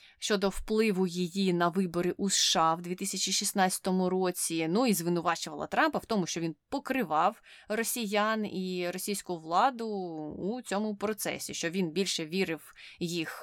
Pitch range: 160-205 Hz